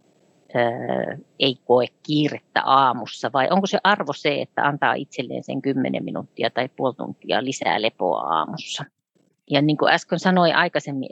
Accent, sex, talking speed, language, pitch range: native, female, 145 wpm, Finnish, 125-150 Hz